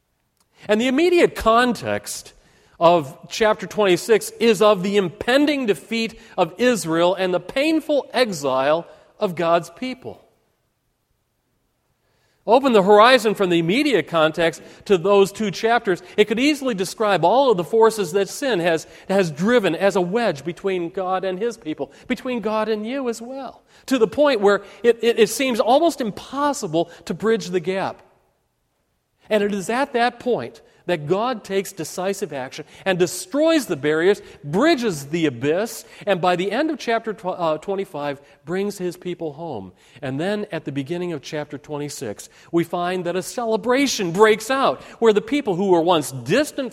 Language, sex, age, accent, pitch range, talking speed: English, male, 40-59, American, 170-235 Hz, 160 wpm